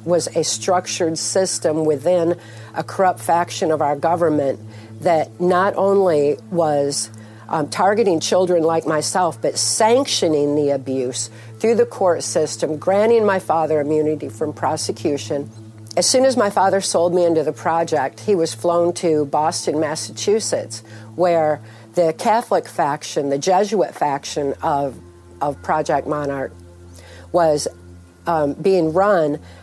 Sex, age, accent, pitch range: female, 50-69, American, 110-170 Hz